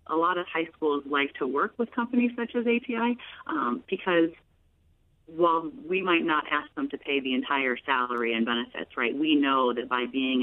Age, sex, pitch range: 40-59, female, 125-160 Hz